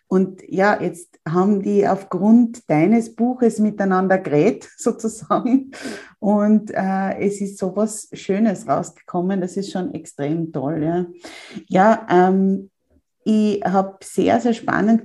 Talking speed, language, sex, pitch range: 125 wpm, German, female, 180-225 Hz